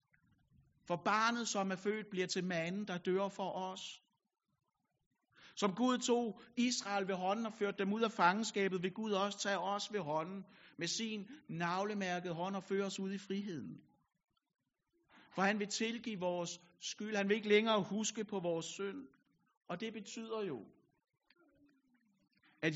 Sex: male